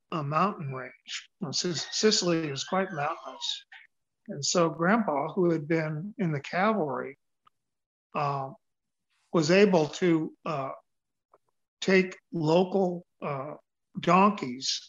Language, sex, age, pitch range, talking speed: English, male, 50-69, 145-180 Hz, 100 wpm